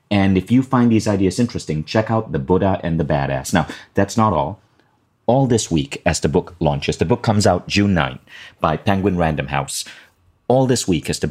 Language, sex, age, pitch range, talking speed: English, male, 30-49, 80-110 Hz, 210 wpm